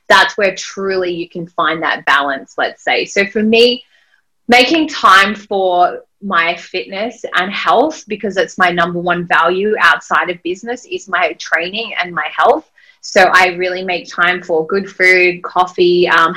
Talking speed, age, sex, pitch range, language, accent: 165 wpm, 20-39, female, 170-205 Hz, English, Australian